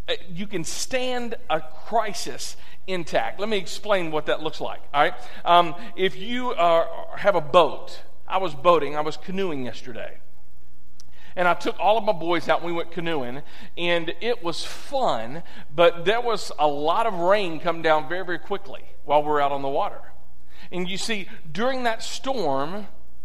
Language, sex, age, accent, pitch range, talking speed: English, male, 50-69, American, 150-215 Hz, 180 wpm